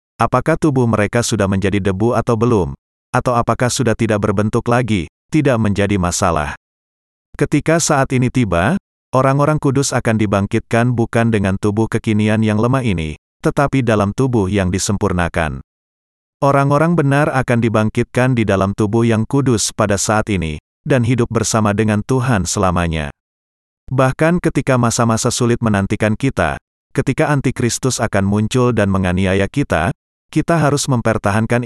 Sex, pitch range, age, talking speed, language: male, 100-125 Hz, 30-49, 135 wpm, Indonesian